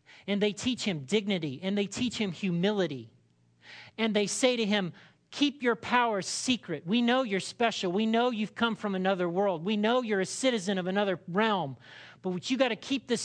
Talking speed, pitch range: 200 wpm, 165-230 Hz